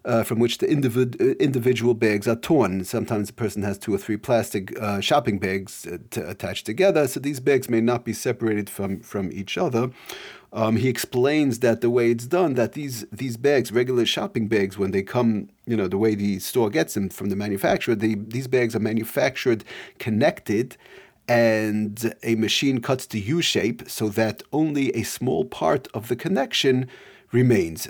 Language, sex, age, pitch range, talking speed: English, male, 40-59, 105-125 Hz, 180 wpm